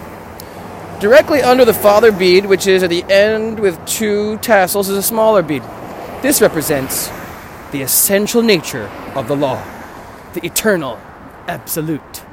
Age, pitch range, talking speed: 20-39, 130-195 Hz, 135 wpm